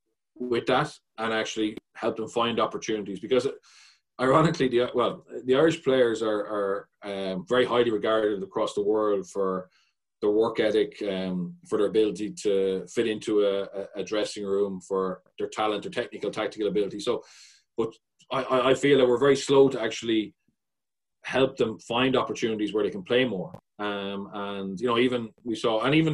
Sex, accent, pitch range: male, Irish, 105-125 Hz